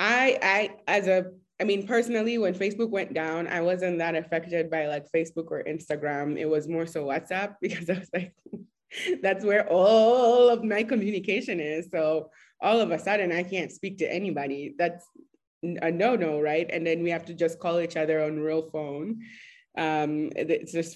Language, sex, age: English, female, 20-39